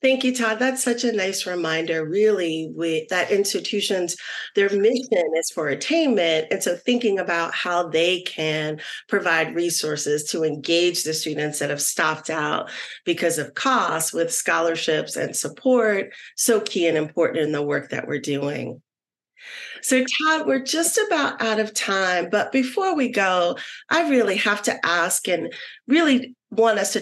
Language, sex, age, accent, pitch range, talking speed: English, female, 40-59, American, 170-260 Hz, 160 wpm